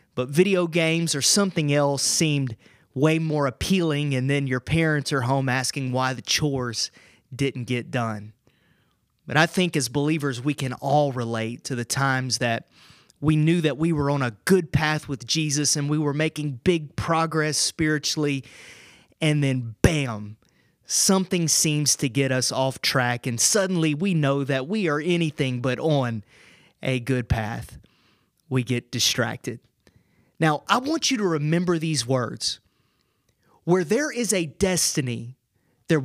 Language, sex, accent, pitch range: English, male, American, 130-175 Hz